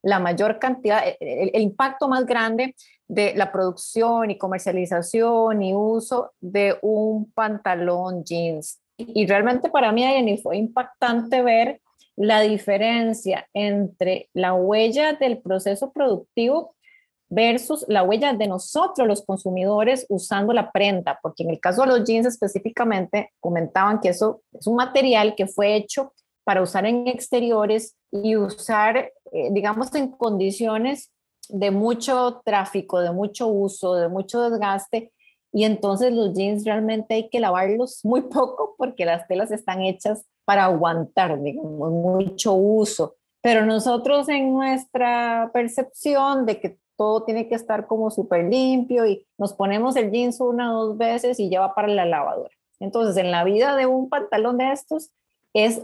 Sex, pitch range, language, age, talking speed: female, 195-250 Hz, Spanish, 30-49, 150 wpm